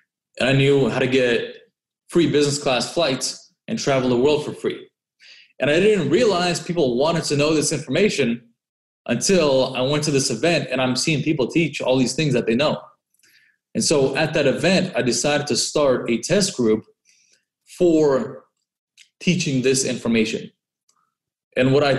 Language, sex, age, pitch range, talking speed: English, male, 20-39, 125-150 Hz, 170 wpm